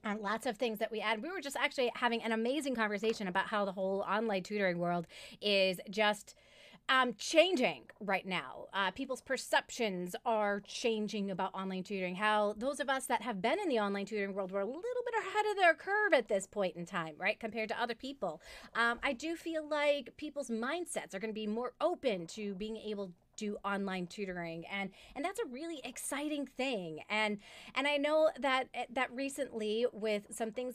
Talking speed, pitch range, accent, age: 200 wpm, 200-260 Hz, American, 30-49